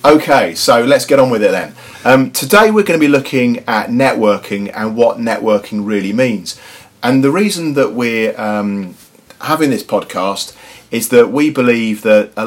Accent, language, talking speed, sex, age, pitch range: British, English, 180 wpm, male, 40-59, 100-125 Hz